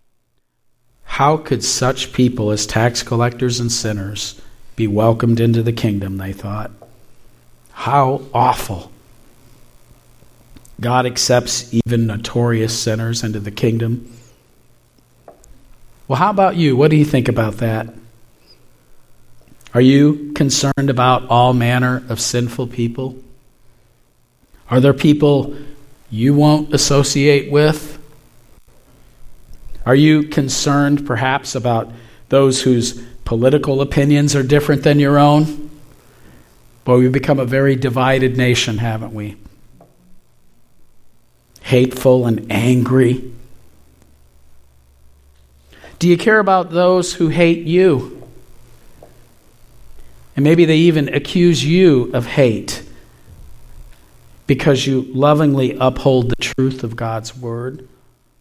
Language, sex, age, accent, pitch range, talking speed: English, male, 50-69, American, 115-140 Hz, 105 wpm